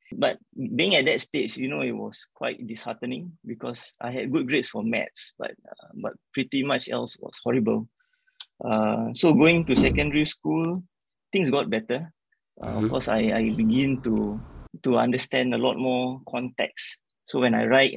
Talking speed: 175 wpm